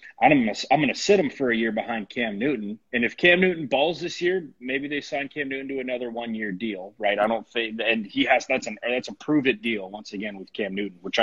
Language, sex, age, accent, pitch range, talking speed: English, male, 30-49, American, 110-155 Hz, 255 wpm